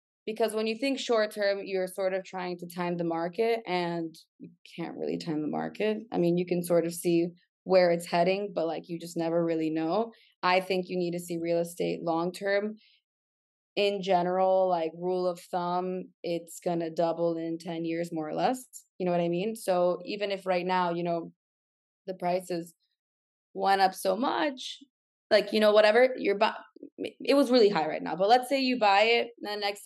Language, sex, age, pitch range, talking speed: English, female, 20-39, 170-200 Hz, 205 wpm